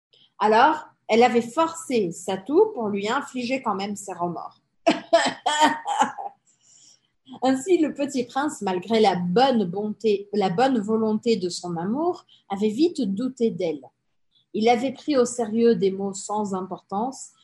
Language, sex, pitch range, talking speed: Portuguese, female, 200-265 Hz, 130 wpm